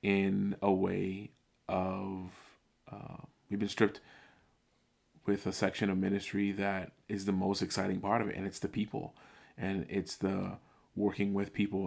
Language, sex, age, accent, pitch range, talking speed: English, male, 30-49, American, 95-100 Hz, 155 wpm